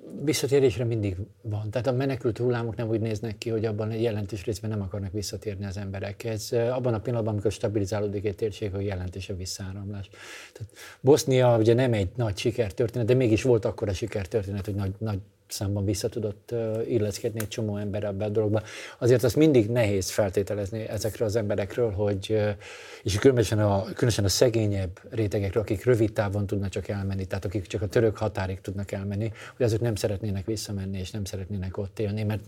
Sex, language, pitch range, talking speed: male, Hungarian, 100-115 Hz, 185 wpm